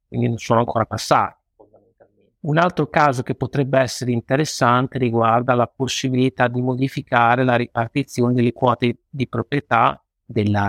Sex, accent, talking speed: male, native, 135 wpm